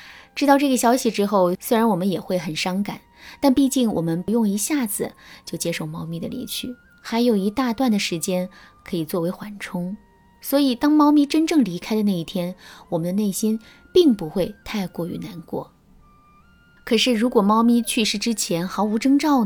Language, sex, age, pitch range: Chinese, female, 20-39, 180-260 Hz